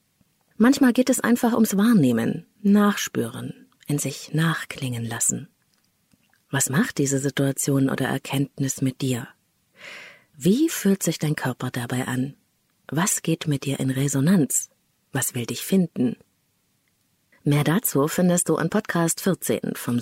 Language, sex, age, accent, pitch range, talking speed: German, female, 30-49, German, 135-205 Hz, 130 wpm